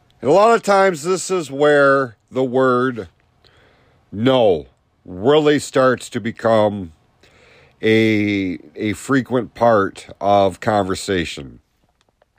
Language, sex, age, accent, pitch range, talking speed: English, male, 50-69, American, 115-155 Hz, 100 wpm